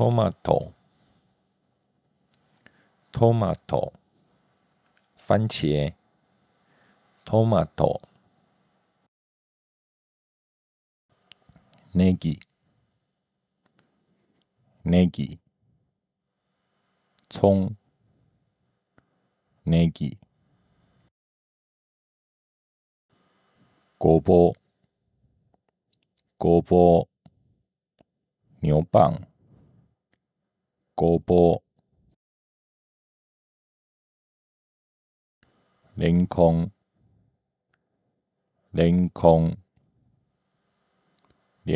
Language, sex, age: Japanese, male, 50-69